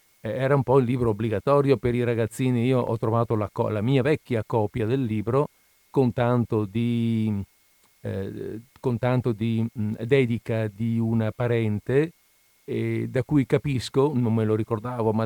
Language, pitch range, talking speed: Italian, 105-130 Hz, 155 wpm